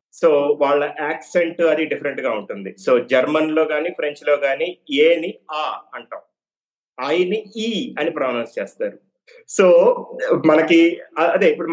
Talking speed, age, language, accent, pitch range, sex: 130 wpm, 30-49, Telugu, native, 145-225 Hz, male